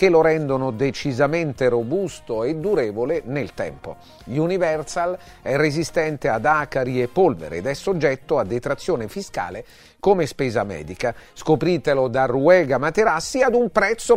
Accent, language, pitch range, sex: native, Italian, 125-175 Hz, male